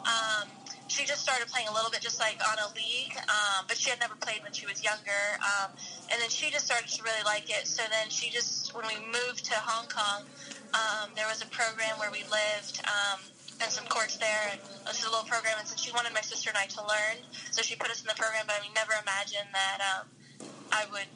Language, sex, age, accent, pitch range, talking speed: English, female, 10-29, American, 205-230 Hz, 250 wpm